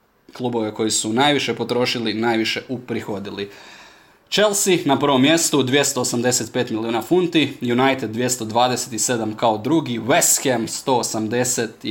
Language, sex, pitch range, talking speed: Croatian, male, 110-135 Hz, 105 wpm